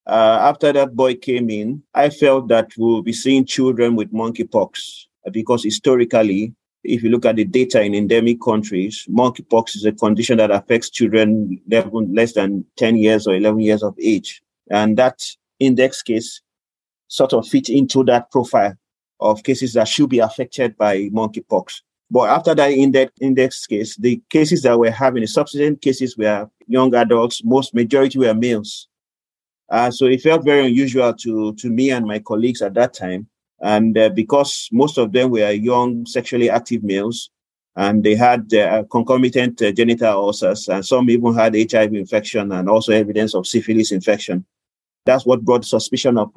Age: 30-49